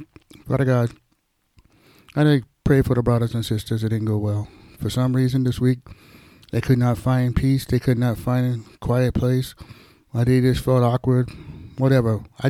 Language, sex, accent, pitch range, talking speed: English, male, American, 110-135 Hz, 180 wpm